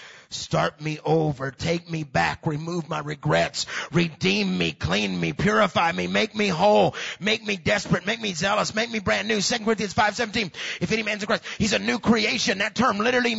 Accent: American